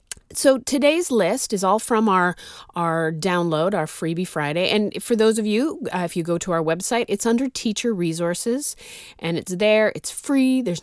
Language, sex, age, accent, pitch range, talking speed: English, female, 30-49, American, 170-245 Hz, 190 wpm